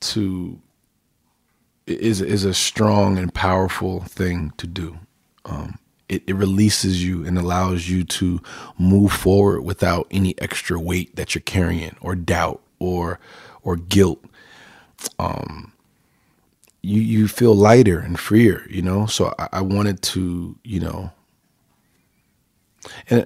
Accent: American